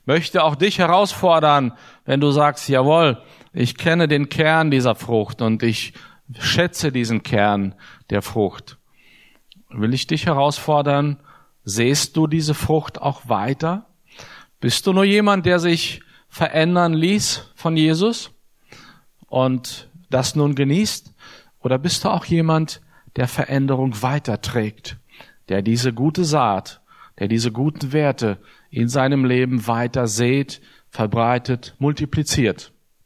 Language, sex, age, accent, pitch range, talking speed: German, male, 50-69, German, 120-155 Hz, 125 wpm